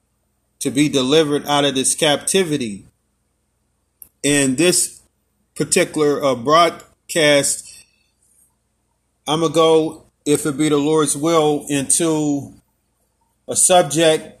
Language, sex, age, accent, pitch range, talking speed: English, male, 30-49, American, 135-155 Hz, 105 wpm